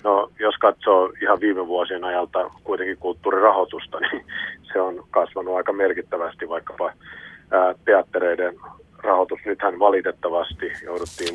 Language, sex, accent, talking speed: Finnish, male, native, 110 wpm